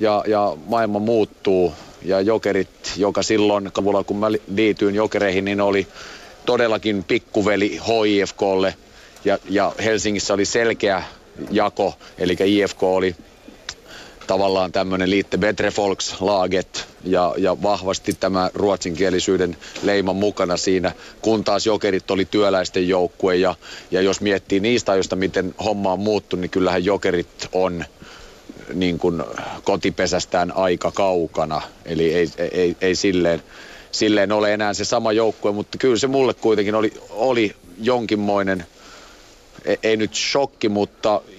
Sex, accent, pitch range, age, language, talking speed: male, native, 95-115 Hz, 30-49, Finnish, 125 wpm